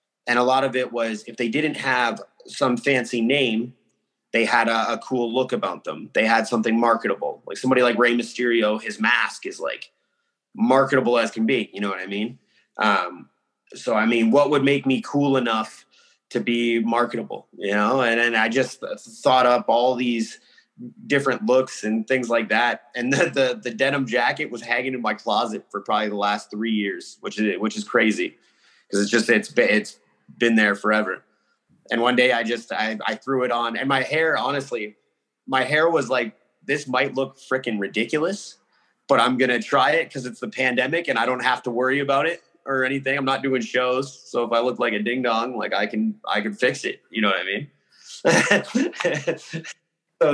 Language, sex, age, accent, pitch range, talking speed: English, male, 30-49, American, 115-135 Hz, 200 wpm